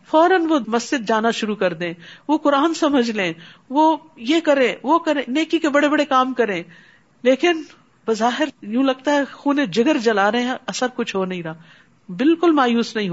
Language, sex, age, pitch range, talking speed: Urdu, female, 50-69, 215-305 Hz, 185 wpm